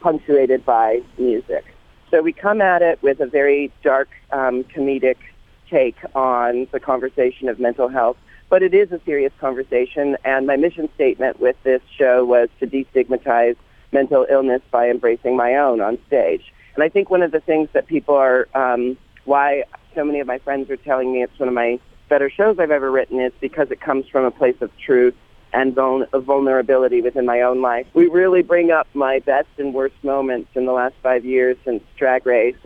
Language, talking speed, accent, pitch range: English, 200 wpm, American, 125-150 Hz